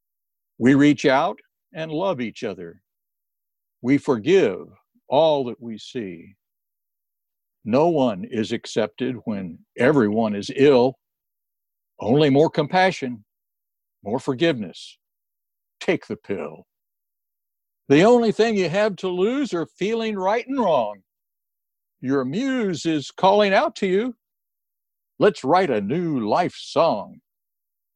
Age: 60-79